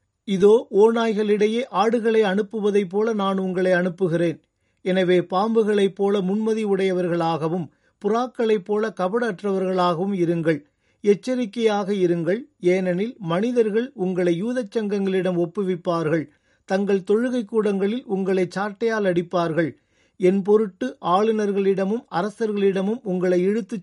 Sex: male